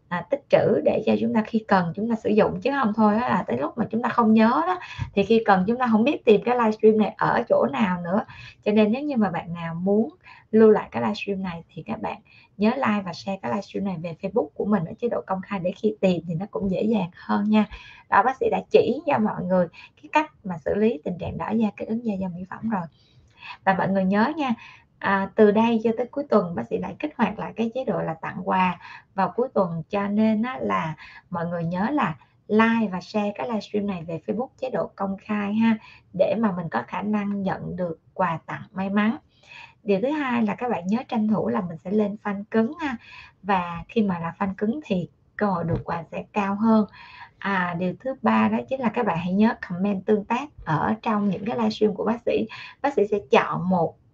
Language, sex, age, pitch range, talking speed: Vietnamese, female, 20-39, 185-225 Hz, 245 wpm